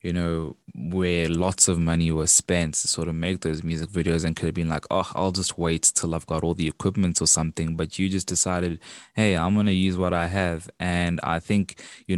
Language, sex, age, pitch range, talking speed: English, male, 20-39, 85-95 Hz, 235 wpm